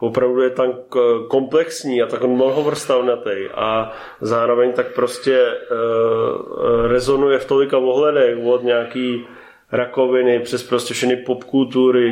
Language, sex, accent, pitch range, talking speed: Czech, male, native, 120-125 Hz, 115 wpm